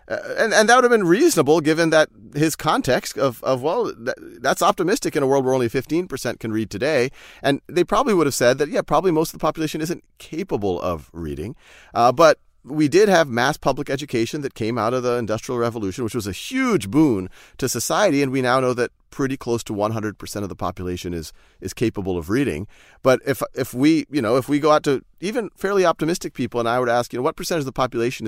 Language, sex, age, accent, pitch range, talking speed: English, male, 30-49, American, 110-145 Hz, 235 wpm